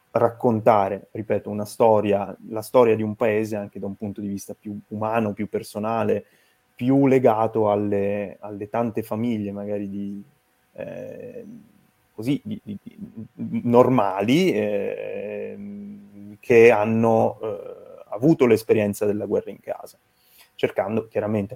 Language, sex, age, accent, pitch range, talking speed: Italian, male, 30-49, native, 100-115 Hz, 125 wpm